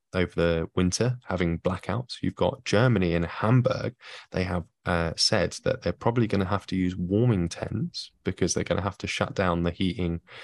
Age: 10-29